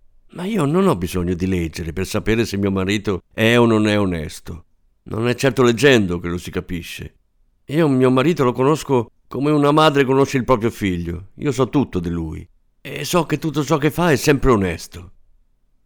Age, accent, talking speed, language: 50-69, native, 195 wpm, Italian